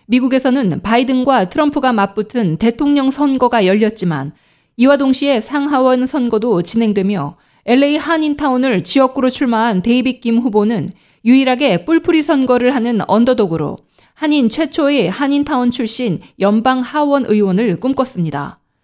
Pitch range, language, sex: 215-275 Hz, Korean, female